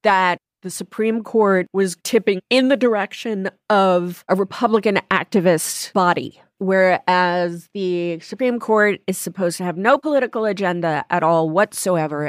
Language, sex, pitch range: English, female, 170-220 Hz